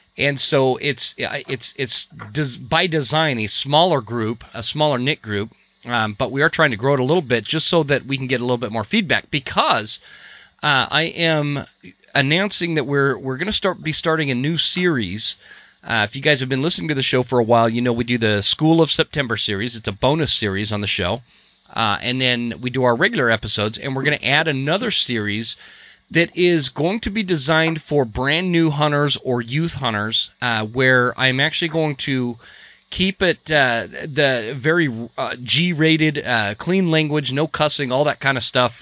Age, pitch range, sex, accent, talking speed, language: 30-49, 120-160 Hz, male, American, 205 wpm, English